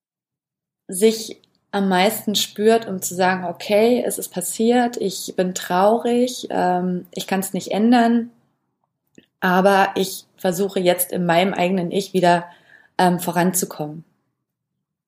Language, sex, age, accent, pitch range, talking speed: German, female, 20-39, German, 190-225 Hz, 115 wpm